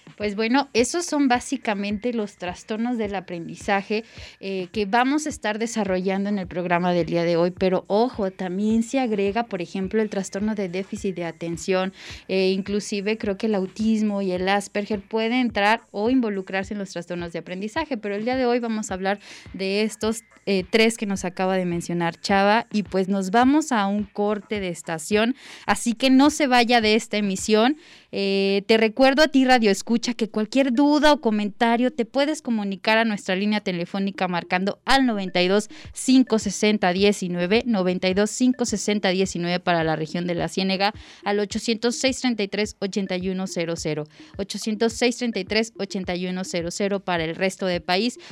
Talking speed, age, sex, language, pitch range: 160 wpm, 20-39, female, Spanish, 190-230 Hz